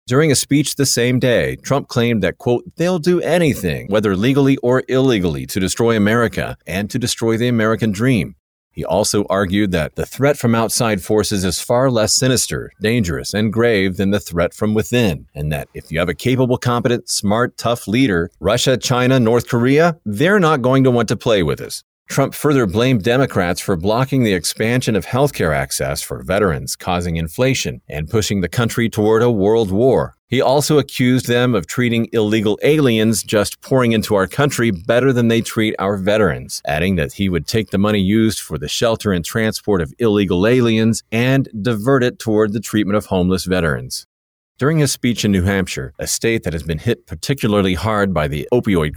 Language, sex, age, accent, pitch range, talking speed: English, male, 40-59, American, 100-125 Hz, 190 wpm